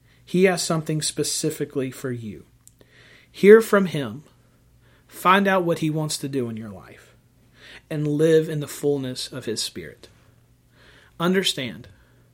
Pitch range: 120-155 Hz